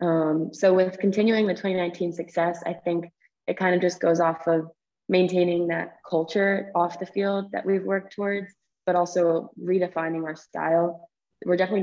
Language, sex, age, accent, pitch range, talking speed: English, female, 20-39, American, 165-185 Hz, 165 wpm